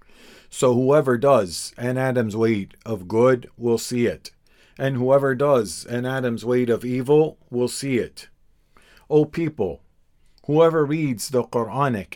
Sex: male